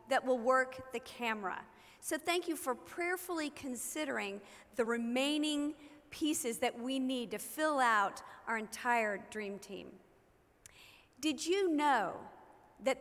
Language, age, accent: English, 40-59, American